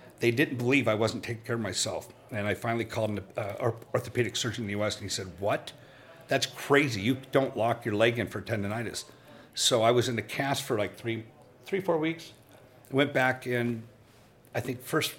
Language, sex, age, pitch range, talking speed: English, male, 50-69, 110-135 Hz, 205 wpm